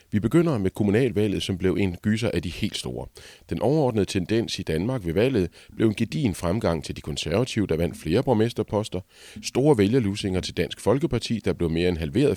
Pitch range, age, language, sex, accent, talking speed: 85-110 Hz, 30-49, Danish, male, native, 195 wpm